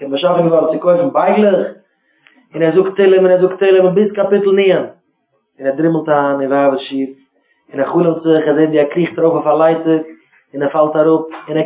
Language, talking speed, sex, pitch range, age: English, 170 wpm, male, 150-185 Hz, 20-39